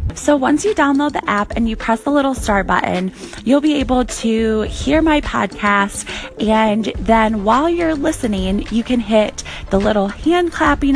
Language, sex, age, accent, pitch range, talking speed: English, female, 20-39, American, 200-275 Hz, 175 wpm